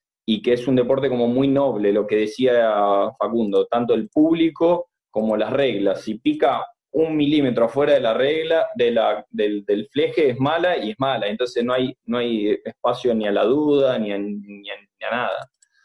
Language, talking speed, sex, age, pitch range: Spanish, 200 wpm, male, 20-39, 110-140 Hz